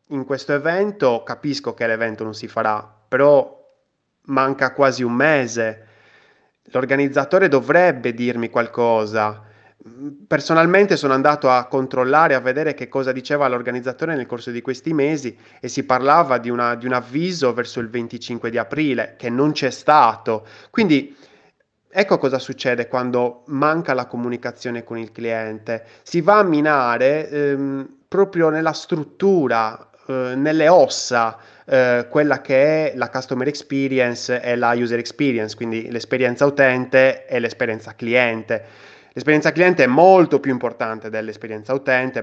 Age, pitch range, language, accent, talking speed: 20-39, 115-140 Hz, Italian, native, 140 wpm